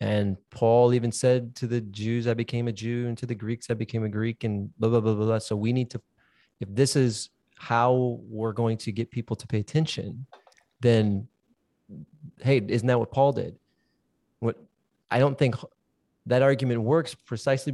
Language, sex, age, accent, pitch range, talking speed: English, male, 20-39, American, 115-135 Hz, 190 wpm